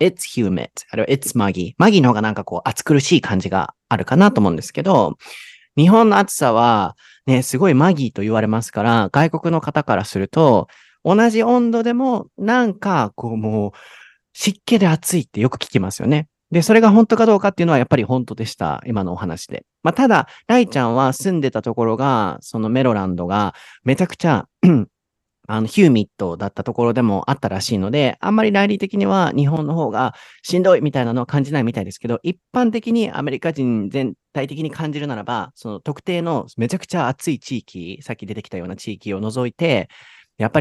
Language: Japanese